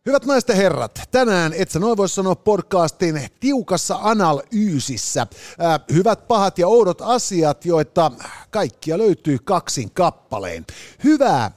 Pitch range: 140-200 Hz